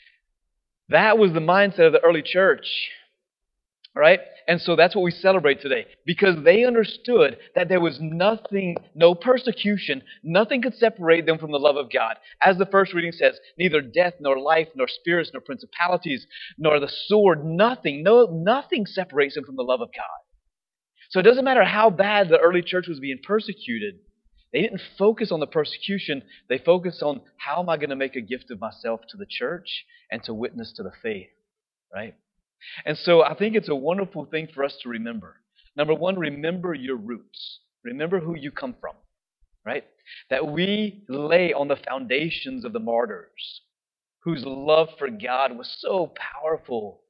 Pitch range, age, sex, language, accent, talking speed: 150-215 Hz, 30-49, male, English, American, 180 wpm